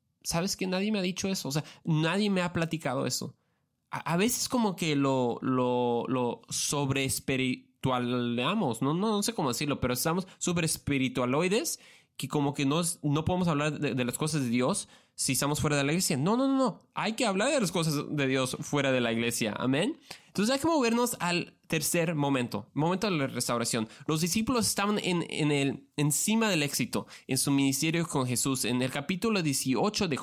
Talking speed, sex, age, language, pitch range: 195 wpm, male, 20-39, Spanish, 125-165 Hz